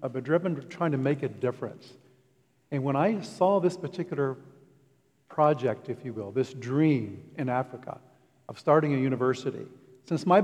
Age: 50-69